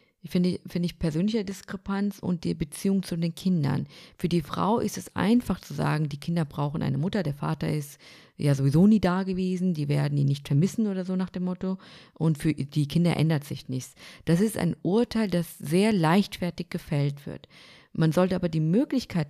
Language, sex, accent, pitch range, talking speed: German, female, German, 150-190 Hz, 195 wpm